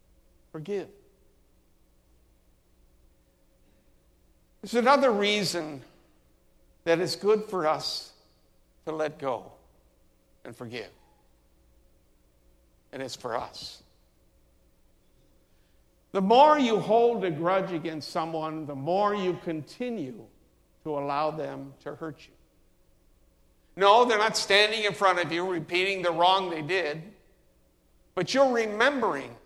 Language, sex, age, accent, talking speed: English, male, 60-79, American, 105 wpm